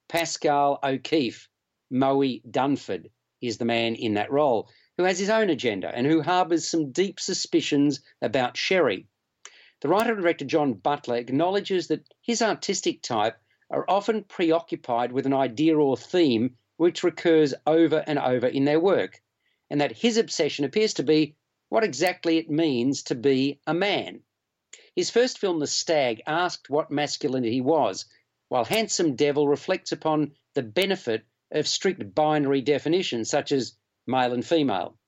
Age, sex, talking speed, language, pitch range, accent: 50-69, male, 155 wpm, English, 135-175 Hz, Australian